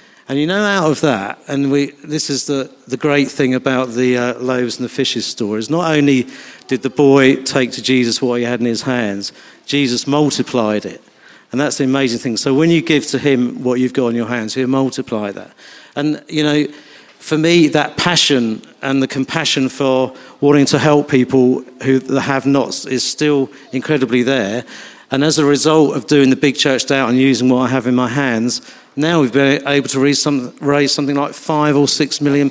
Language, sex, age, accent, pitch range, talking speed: English, male, 50-69, British, 125-150 Hz, 210 wpm